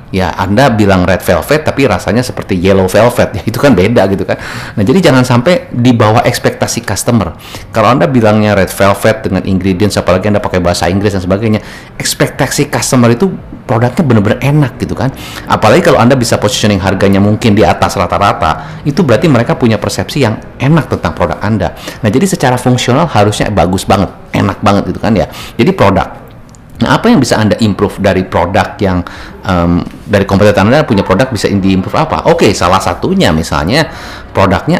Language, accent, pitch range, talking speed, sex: Indonesian, native, 95-120 Hz, 180 wpm, male